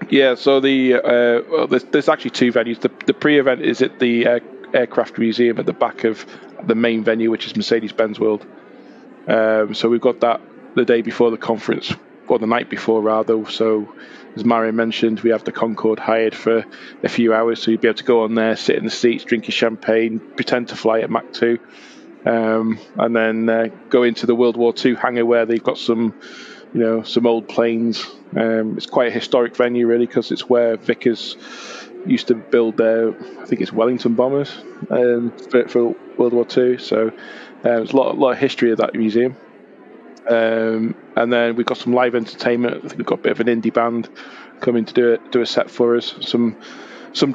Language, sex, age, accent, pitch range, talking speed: English, male, 20-39, British, 115-120 Hz, 210 wpm